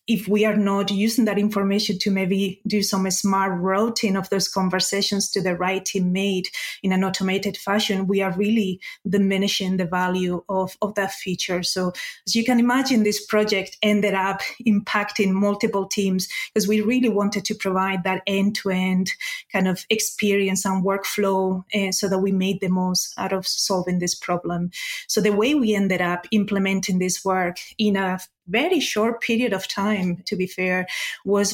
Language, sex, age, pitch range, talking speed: English, female, 30-49, 190-210 Hz, 175 wpm